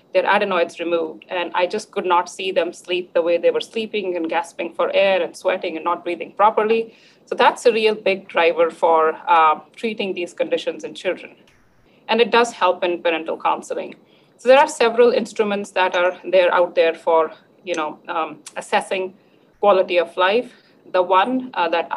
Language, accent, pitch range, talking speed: English, Indian, 175-215 Hz, 185 wpm